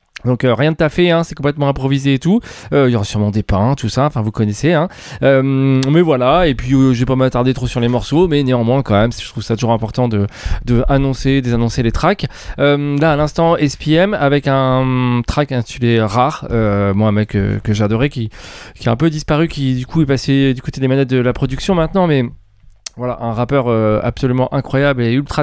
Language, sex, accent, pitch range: French, male, French, 120-160 Hz